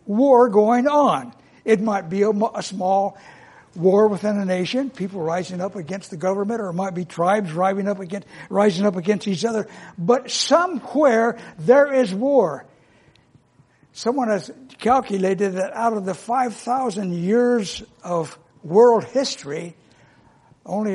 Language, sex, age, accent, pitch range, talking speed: English, male, 60-79, American, 175-230 Hz, 140 wpm